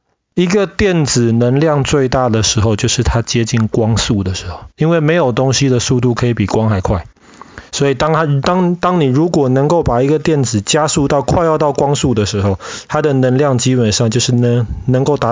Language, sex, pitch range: Chinese, male, 110-150 Hz